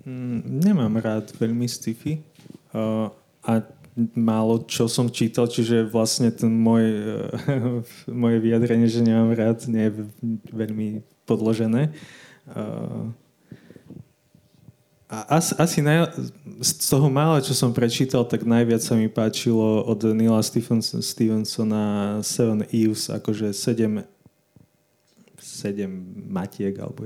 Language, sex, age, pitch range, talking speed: Slovak, male, 20-39, 105-120 Hz, 110 wpm